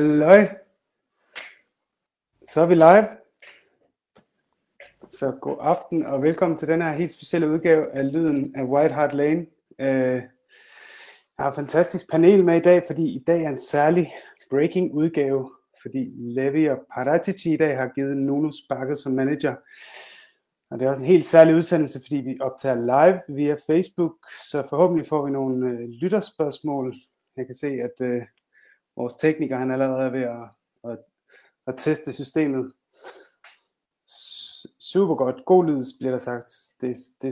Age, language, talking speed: 30-49, Danish, 155 wpm